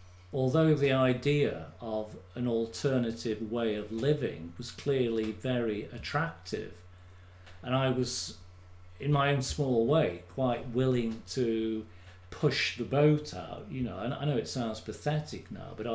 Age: 50-69